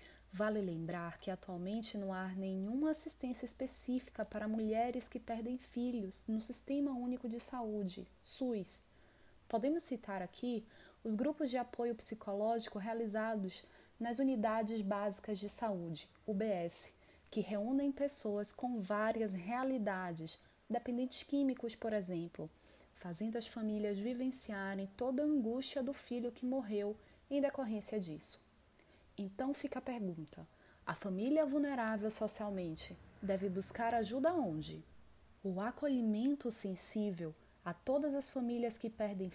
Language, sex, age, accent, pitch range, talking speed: Portuguese, female, 20-39, Brazilian, 200-255 Hz, 120 wpm